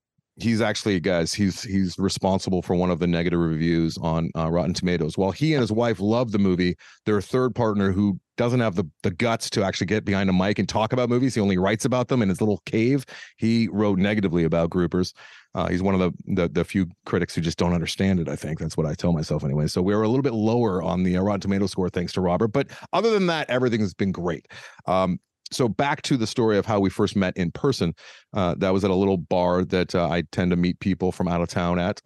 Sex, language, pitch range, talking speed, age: male, English, 90-115 Hz, 250 wpm, 40-59